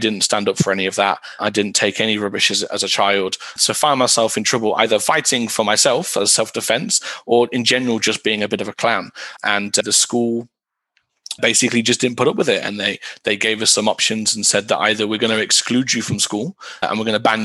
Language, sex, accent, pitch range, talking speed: English, male, British, 105-120 Hz, 250 wpm